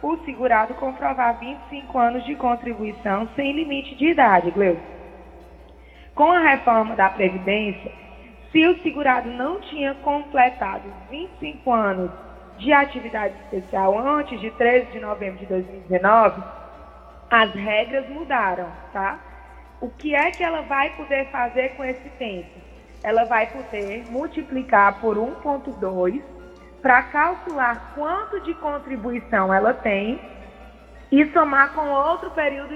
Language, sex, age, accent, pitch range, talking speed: Portuguese, female, 20-39, Brazilian, 215-275 Hz, 125 wpm